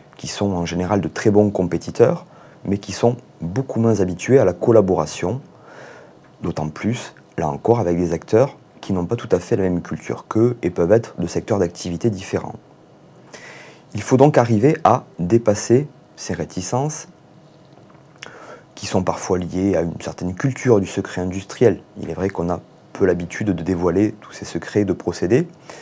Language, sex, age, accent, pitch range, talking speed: French, male, 30-49, French, 90-125 Hz, 175 wpm